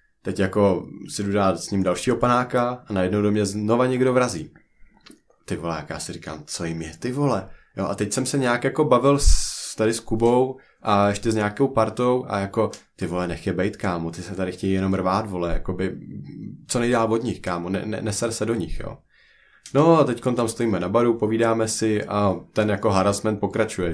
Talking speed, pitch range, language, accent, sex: 210 wpm, 95-120 Hz, Czech, native, male